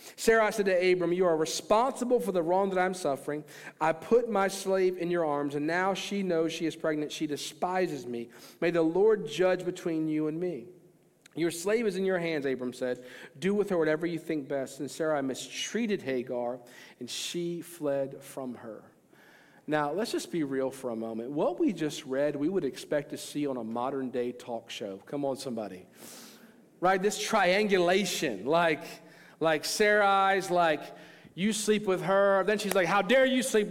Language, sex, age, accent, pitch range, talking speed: English, male, 50-69, American, 145-205 Hz, 190 wpm